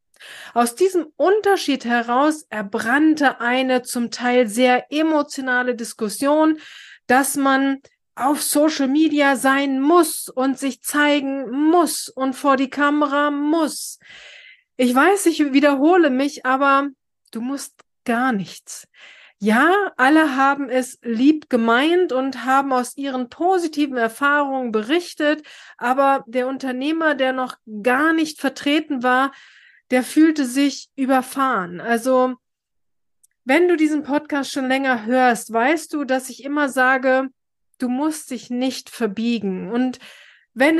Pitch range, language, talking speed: 250-295 Hz, German, 125 wpm